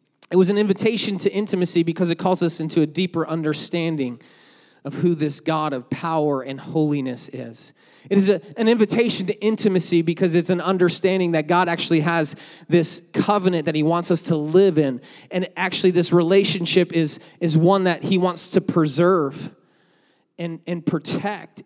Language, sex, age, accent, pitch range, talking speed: English, male, 30-49, American, 160-200 Hz, 170 wpm